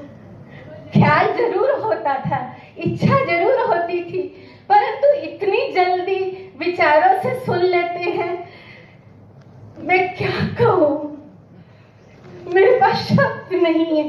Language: Hindi